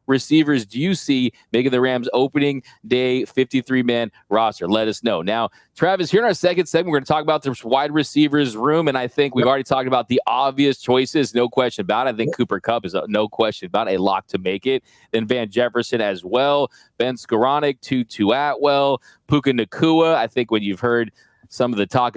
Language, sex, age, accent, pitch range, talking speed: English, male, 20-39, American, 115-145 Hz, 215 wpm